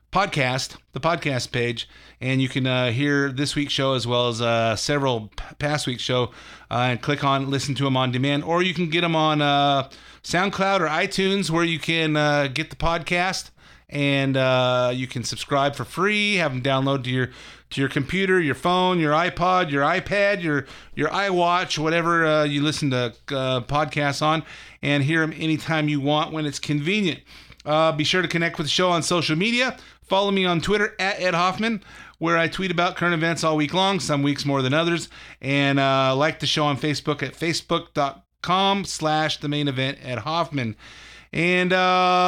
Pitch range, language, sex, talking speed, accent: 140-180 Hz, English, male, 190 wpm, American